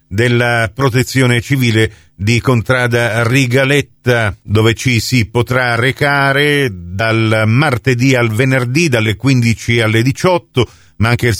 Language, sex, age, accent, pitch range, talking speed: Italian, male, 50-69, native, 115-135 Hz, 115 wpm